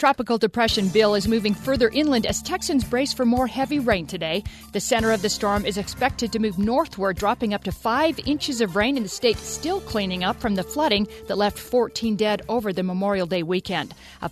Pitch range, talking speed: 200-250 Hz, 215 wpm